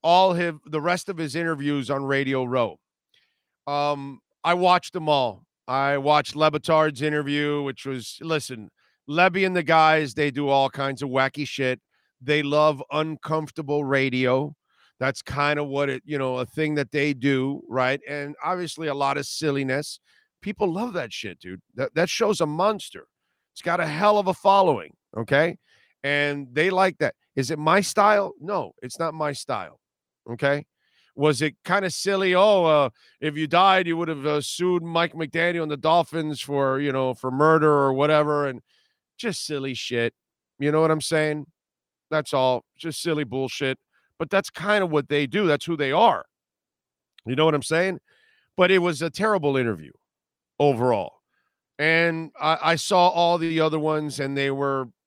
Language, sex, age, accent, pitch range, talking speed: English, male, 40-59, American, 135-165 Hz, 180 wpm